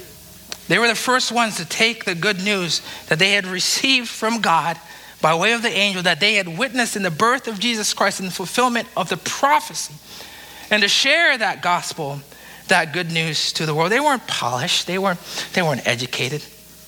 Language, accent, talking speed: English, American, 195 wpm